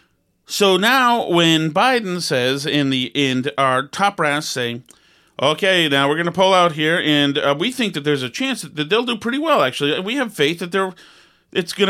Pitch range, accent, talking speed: 150-210 Hz, American, 200 wpm